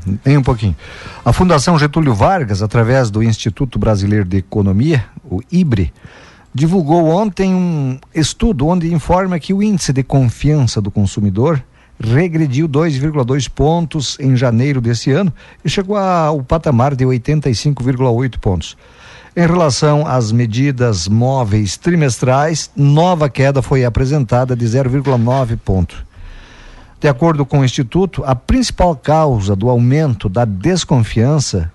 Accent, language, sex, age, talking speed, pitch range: Brazilian, Portuguese, male, 50-69, 125 wpm, 115-155 Hz